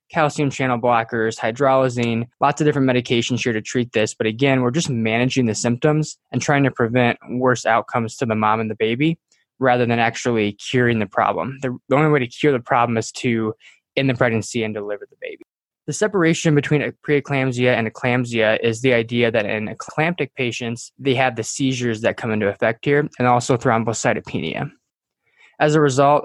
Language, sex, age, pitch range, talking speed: English, male, 20-39, 115-140 Hz, 185 wpm